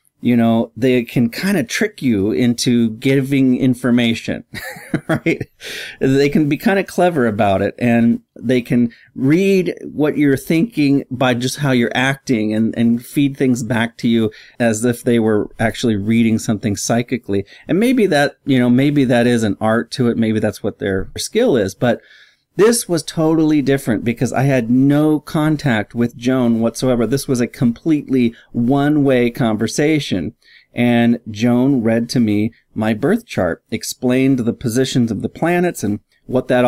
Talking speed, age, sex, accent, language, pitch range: 165 wpm, 40-59, male, American, English, 115-140 Hz